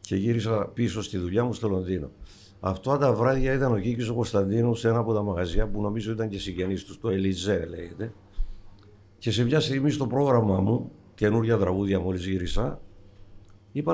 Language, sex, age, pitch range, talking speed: Greek, male, 60-79, 100-125 Hz, 175 wpm